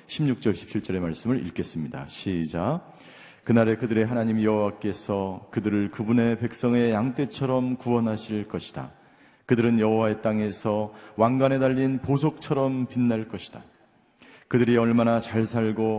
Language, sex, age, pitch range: Korean, male, 40-59, 115-155 Hz